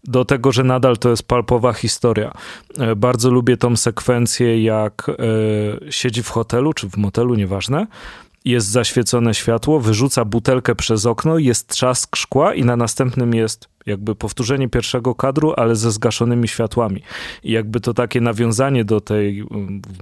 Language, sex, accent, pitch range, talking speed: Polish, male, native, 110-125 Hz, 150 wpm